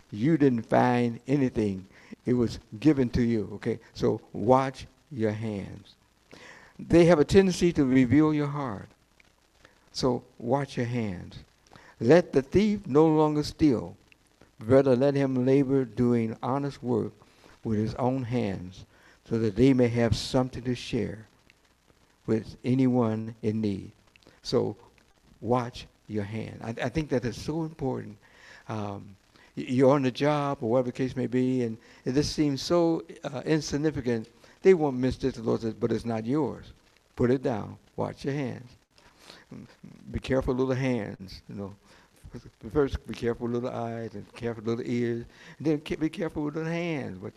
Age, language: 60-79, English